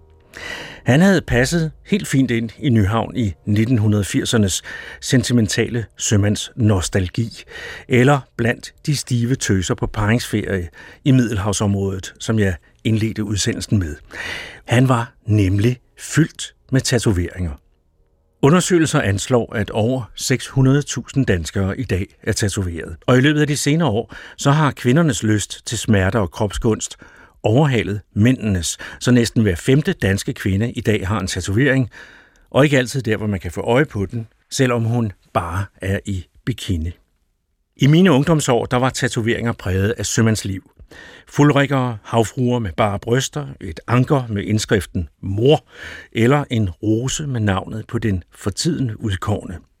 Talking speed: 140 wpm